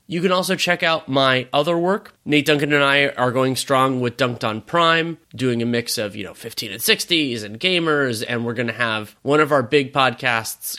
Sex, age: male, 30-49